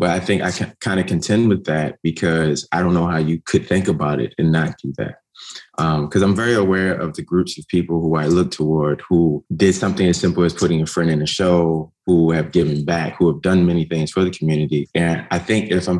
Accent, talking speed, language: American, 250 wpm, English